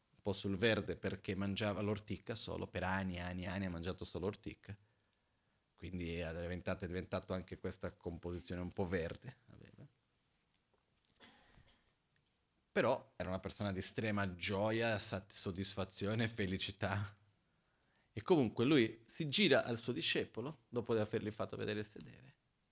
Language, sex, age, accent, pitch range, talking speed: Italian, male, 40-59, native, 95-125 Hz, 135 wpm